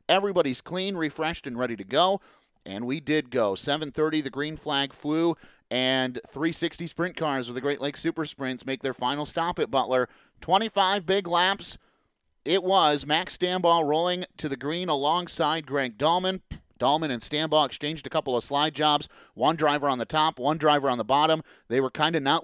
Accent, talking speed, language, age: American, 185 wpm, English, 30-49